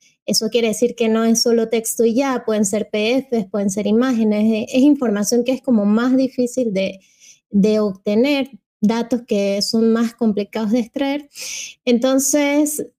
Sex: female